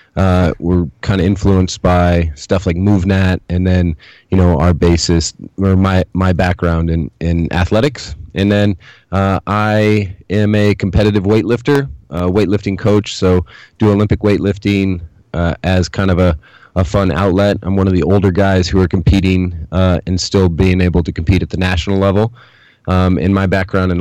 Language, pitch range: English, 90-105 Hz